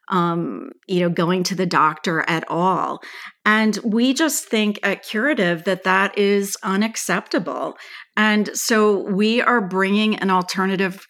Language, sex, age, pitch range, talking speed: English, female, 40-59, 180-205 Hz, 135 wpm